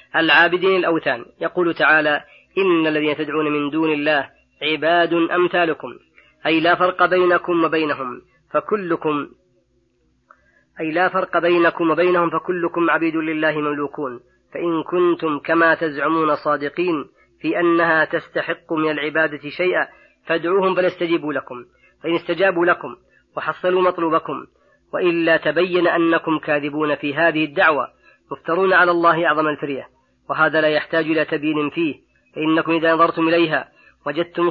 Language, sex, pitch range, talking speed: Arabic, female, 155-175 Hz, 120 wpm